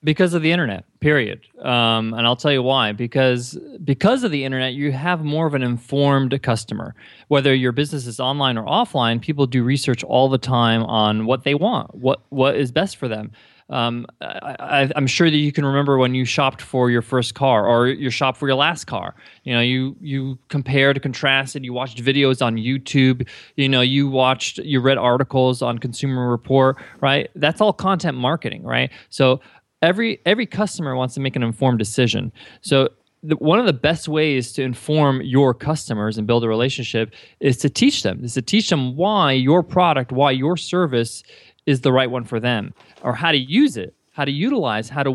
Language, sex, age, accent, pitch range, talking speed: English, male, 20-39, American, 125-150 Hz, 200 wpm